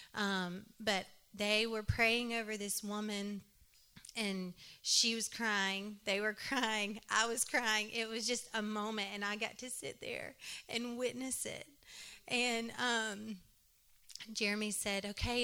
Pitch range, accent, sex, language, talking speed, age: 210-260 Hz, American, female, English, 145 wpm, 30-49